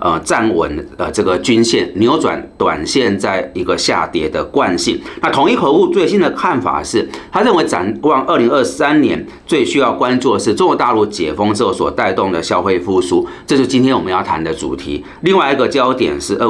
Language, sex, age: Chinese, male, 40-59